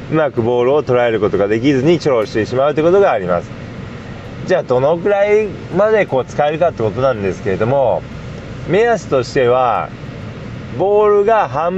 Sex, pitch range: male, 125-180 Hz